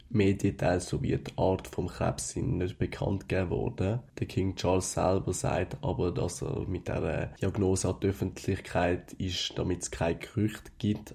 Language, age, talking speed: German, 20-39, 160 wpm